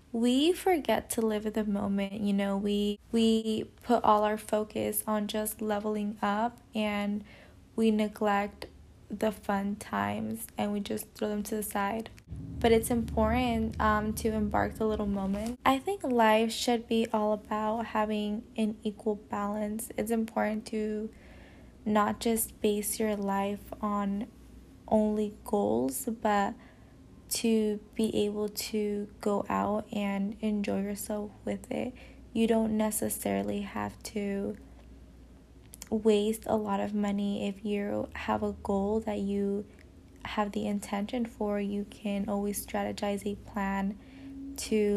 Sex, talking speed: female, 140 wpm